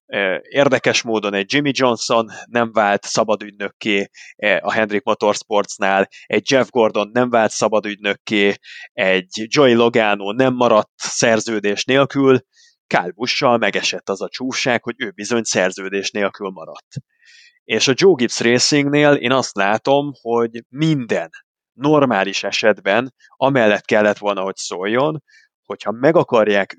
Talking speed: 125 wpm